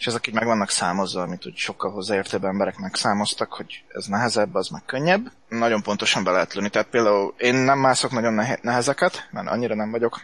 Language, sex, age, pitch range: Hungarian, male, 20-39, 105-140 Hz